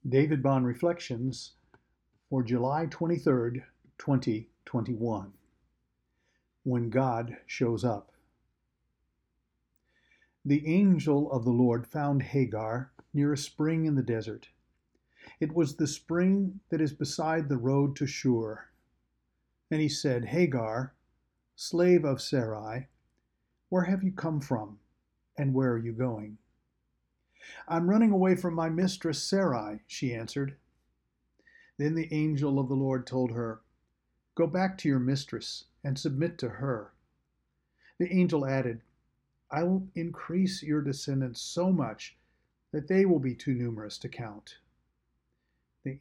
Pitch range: 115-155 Hz